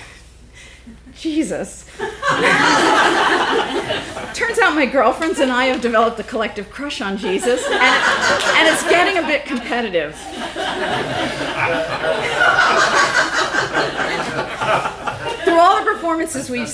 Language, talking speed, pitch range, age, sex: English, 75 wpm, 195-310 Hz, 40-59, female